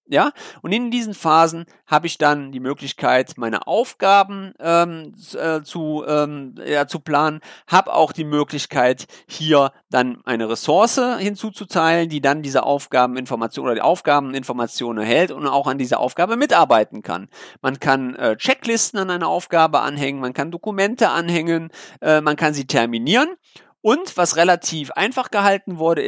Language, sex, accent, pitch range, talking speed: German, male, German, 140-195 Hz, 150 wpm